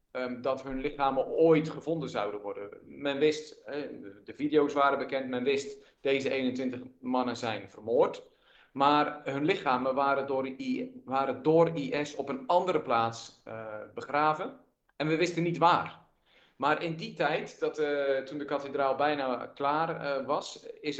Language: Dutch